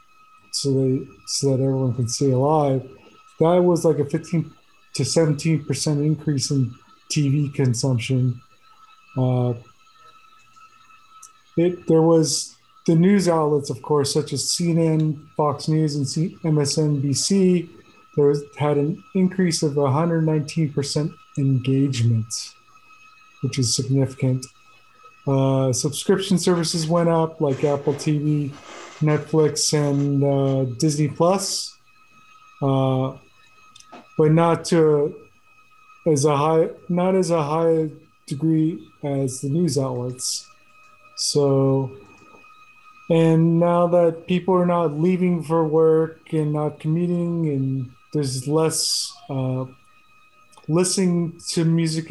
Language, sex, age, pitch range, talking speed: English, male, 30-49, 140-185 Hz, 110 wpm